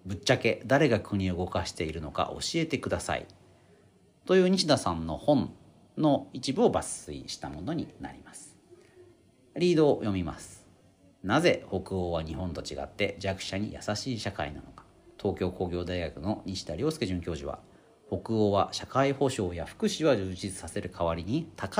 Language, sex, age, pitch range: Japanese, male, 40-59, 90-150 Hz